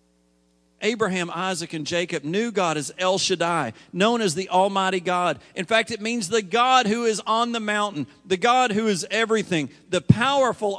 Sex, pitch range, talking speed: male, 125-195 Hz, 180 wpm